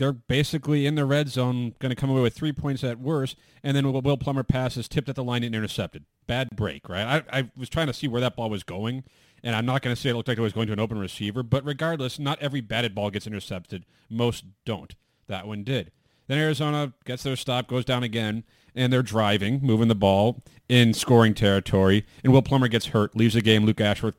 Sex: male